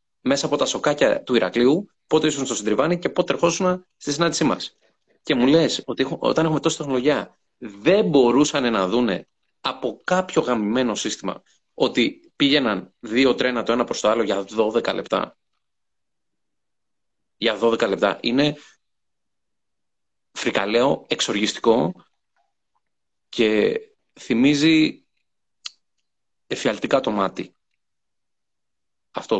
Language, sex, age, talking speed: Greek, male, 30-49, 115 wpm